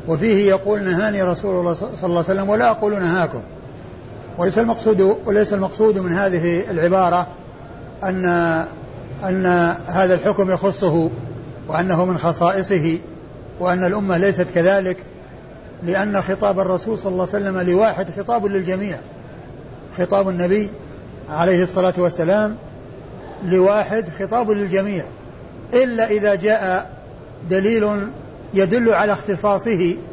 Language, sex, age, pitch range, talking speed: Arabic, male, 50-69, 175-200 Hz, 110 wpm